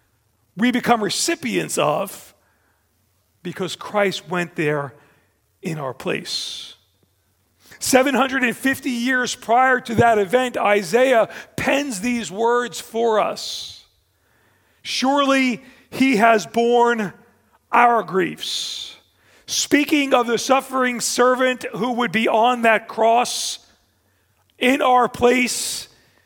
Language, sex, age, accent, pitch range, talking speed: English, male, 40-59, American, 160-250 Hz, 100 wpm